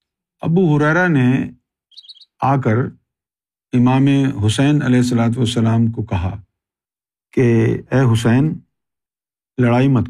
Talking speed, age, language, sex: 95 wpm, 50-69, Urdu, male